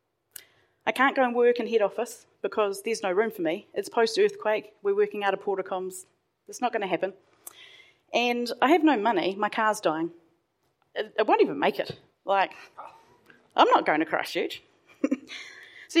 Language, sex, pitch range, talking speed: English, female, 200-305 Hz, 170 wpm